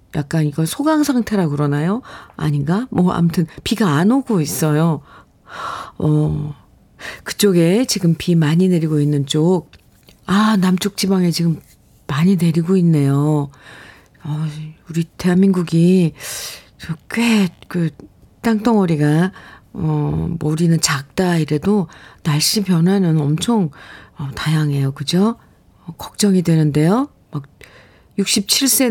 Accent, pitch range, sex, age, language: native, 150-200 Hz, female, 40-59, Korean